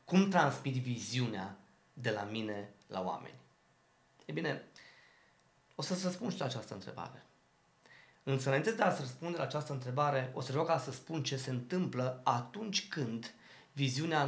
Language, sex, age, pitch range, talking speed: Romanian, male, 20-39, 135-185 Hz, 155 wpm